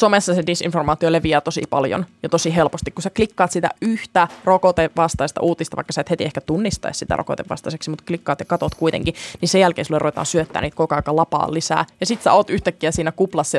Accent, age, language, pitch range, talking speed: native, 20-39, Finnish, 160-185 Hz, 210 wpm